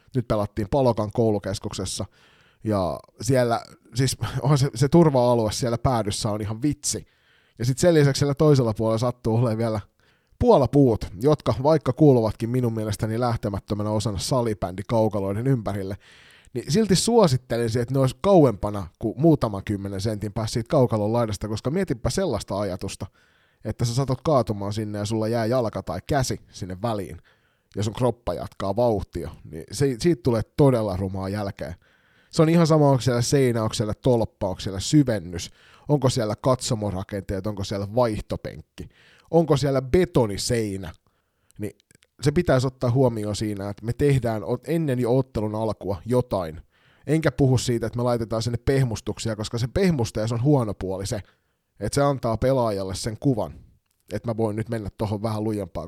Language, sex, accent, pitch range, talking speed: Finnish, male, native, 105-130 Hz, 155 wpm